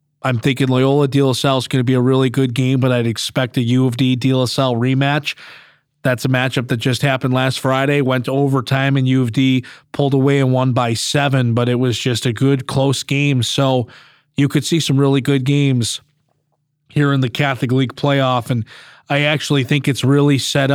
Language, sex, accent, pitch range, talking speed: English, male, American, 130-140 Hz, 195 wpm